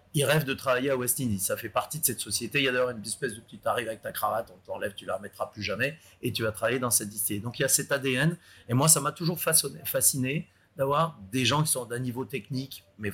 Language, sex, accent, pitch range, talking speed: French, male, French, 110-150 Hz, 285 wpm